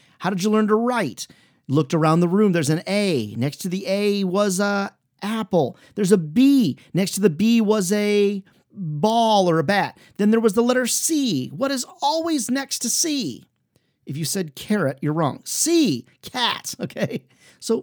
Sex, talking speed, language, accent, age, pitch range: male, 185 wpm, English, American, 40-59, 145-215 Hz